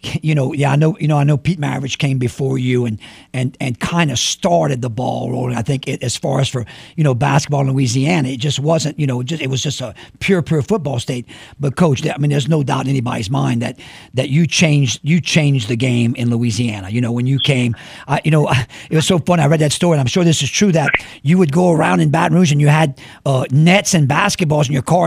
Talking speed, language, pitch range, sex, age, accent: 260 wpm, English, 135-170 Hz, male, 50-69, American